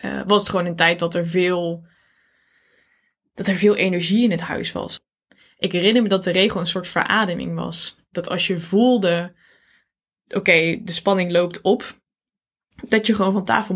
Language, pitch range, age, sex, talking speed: Dutch, 165-190 Hz, 20-39, female, 185 wpm